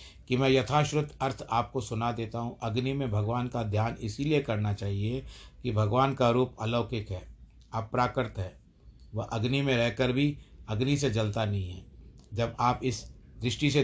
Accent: native